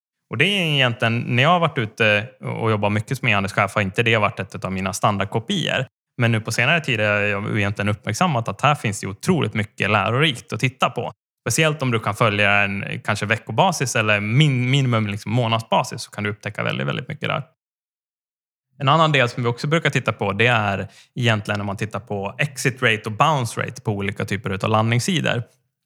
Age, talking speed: 20-39, 205 wpm